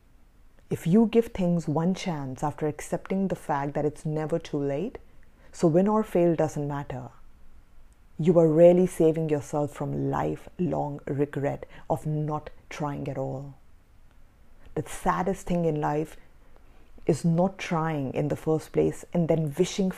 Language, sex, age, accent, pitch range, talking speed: English, female, 30-49, Indian, 145-185 Hz, 145 wpm